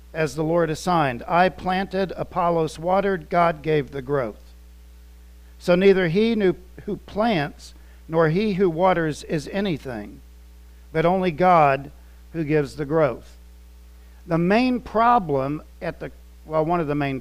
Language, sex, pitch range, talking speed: English, male, 115-195 Hz, 145 wpm